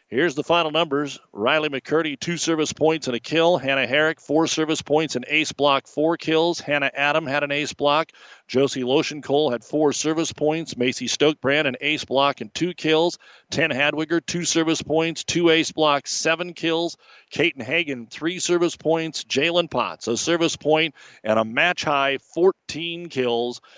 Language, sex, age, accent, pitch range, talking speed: English, male, 40-59, American, 130-165 Hz, 175 wpm